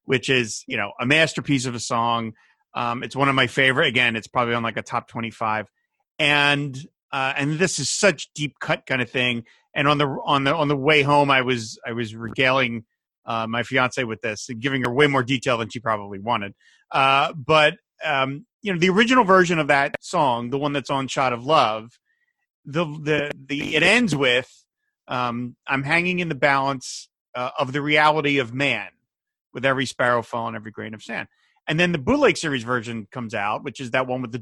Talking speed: 215 wpm